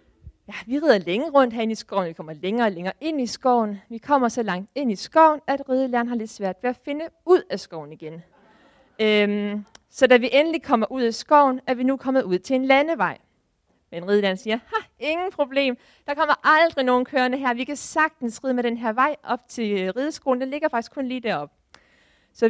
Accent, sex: native, female